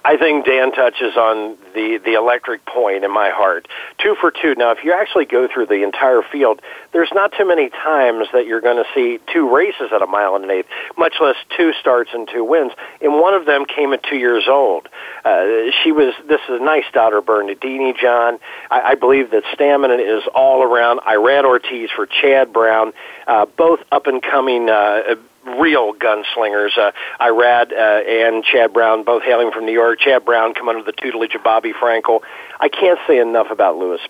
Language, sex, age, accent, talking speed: English, male, 50-69, American, 205 wpm